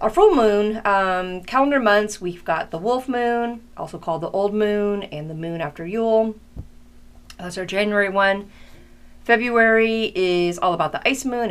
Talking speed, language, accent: 165 wpm, English, American